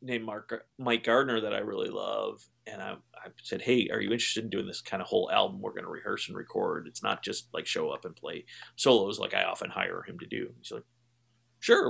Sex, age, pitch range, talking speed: male, 30-49, 115-160 Hz, 240 wpm